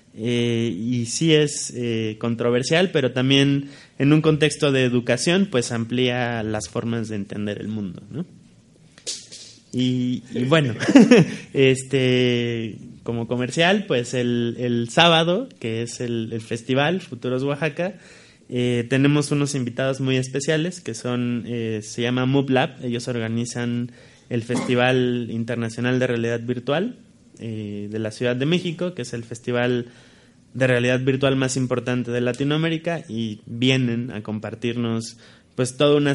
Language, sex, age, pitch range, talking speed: Spanish, male, 20-39, 115-145 Hz, 135 wpm